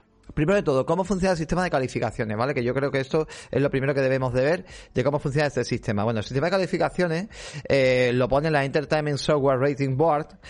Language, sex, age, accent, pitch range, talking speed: Spanish, male, 30-49, Spanish, 130-175 Hz, 230 wpm